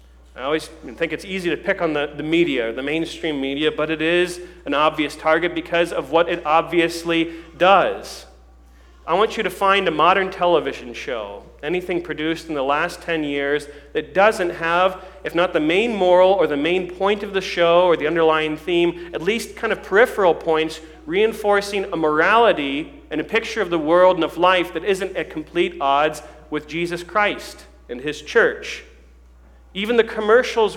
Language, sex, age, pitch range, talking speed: English, male, 40-59, 155-200 Hz, 180 wpm